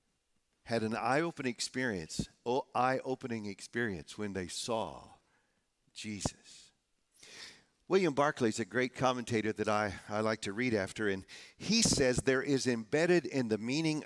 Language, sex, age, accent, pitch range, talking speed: English, male, 50-69, American, 120-160 Hz, 150 wpm